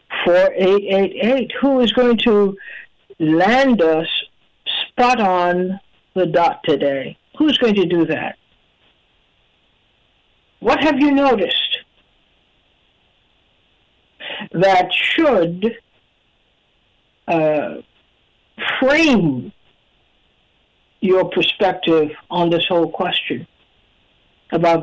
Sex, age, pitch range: female, 60-79, 175-245 Hz